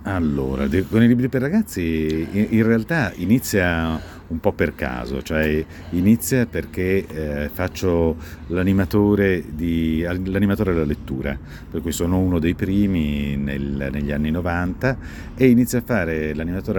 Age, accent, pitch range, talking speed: 50-69, native, 75-95 Hz, 130 wpm